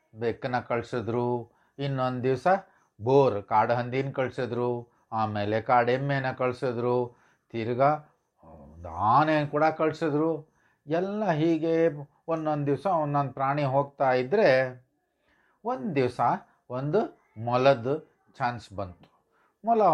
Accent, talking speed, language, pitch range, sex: Indian, 80 wpm, English, 120-155 Hz, male